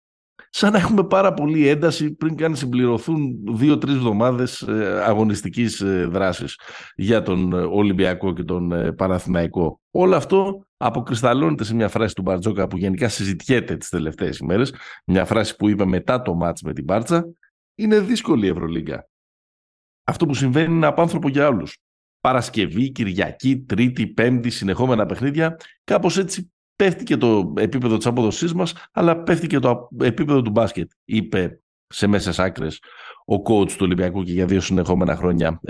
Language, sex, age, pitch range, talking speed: Greek, male, 60-79, 95-150 Hz, 145 wpm